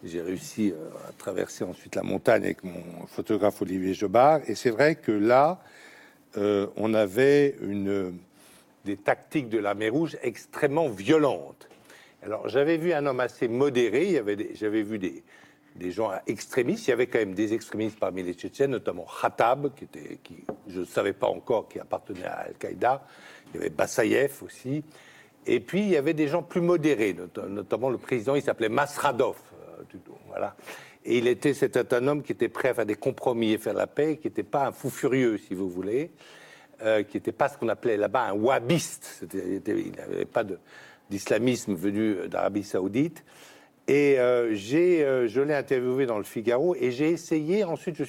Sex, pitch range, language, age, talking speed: male, 110-160 Hz, French, 60-79, 185 wpm